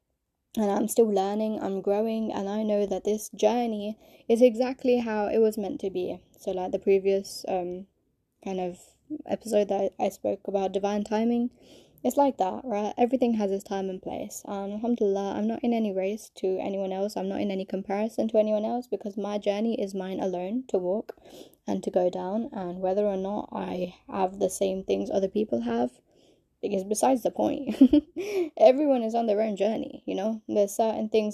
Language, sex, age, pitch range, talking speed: English, female, 10-29, 195-230 Hz, 195 wpm